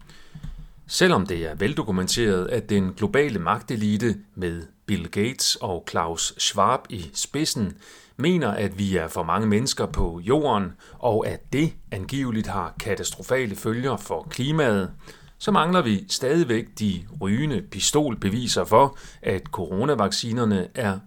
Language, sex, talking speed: Danish, male, 130 wpm